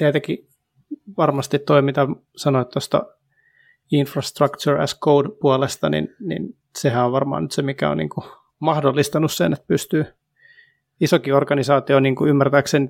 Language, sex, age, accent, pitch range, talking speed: Finnish, male, 30-49, native, 135-155 Hz, 135 wpm